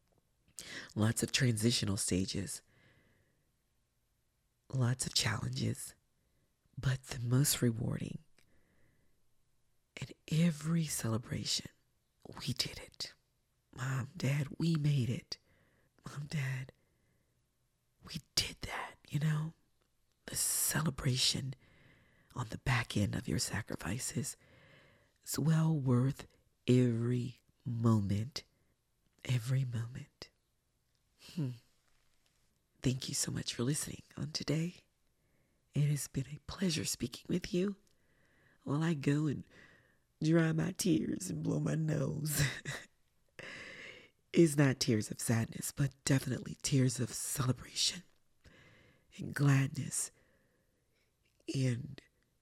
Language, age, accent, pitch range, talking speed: English, 40-59, American, 120-150 Hz, 95 wpm